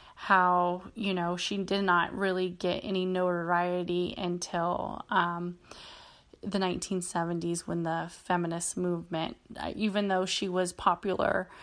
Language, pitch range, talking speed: English, 175-195 Hz, 120 wpm